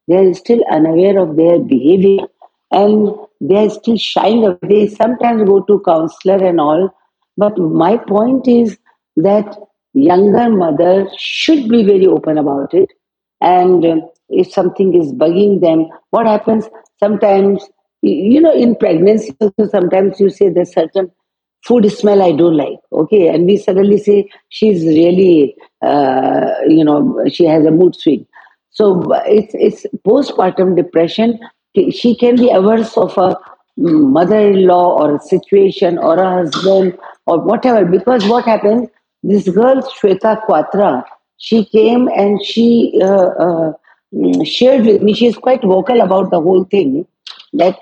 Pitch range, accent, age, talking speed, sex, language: 180-225 Hz, Indian, 50-69, 145 wpm, female, English